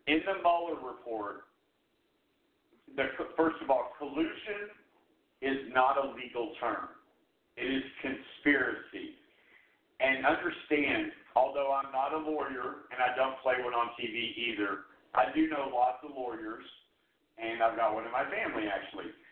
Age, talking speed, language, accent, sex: 50-69, 140 wpm, English, American, male